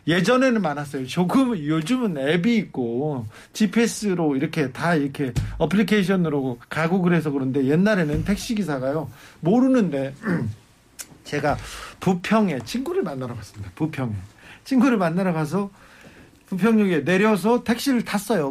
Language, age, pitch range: Korean, 40-59, 140-220 Hz